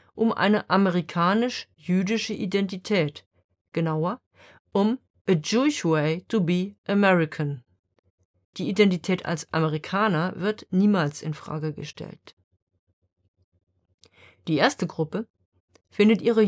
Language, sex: German, female